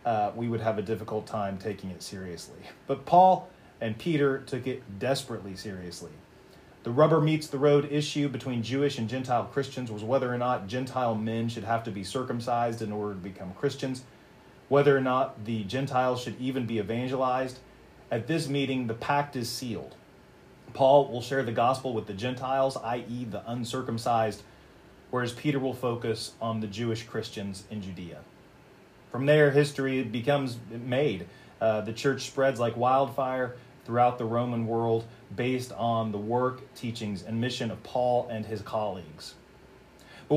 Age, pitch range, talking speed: 30-49, 115-135 Hz, 165 wpm